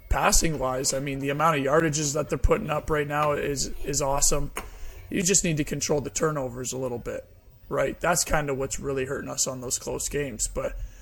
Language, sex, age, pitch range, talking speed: English, male, 20-39, 130-155 Hz, 210 wpm